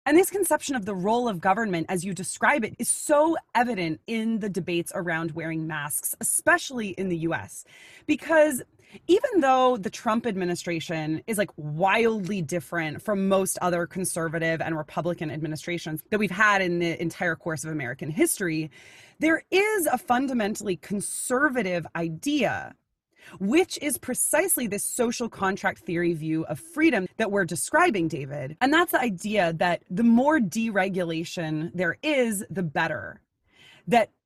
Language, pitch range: English, 170-245 Hz